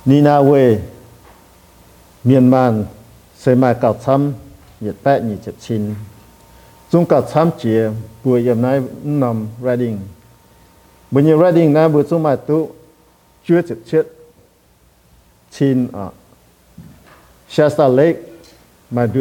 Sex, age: male, 50-69